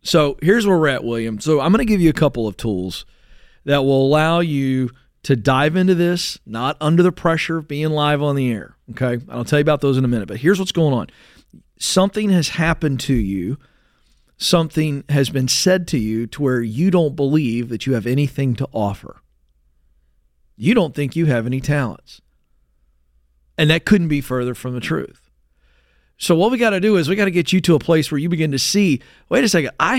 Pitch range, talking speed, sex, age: 125-175 Hz, 220 wpm, male, 40-59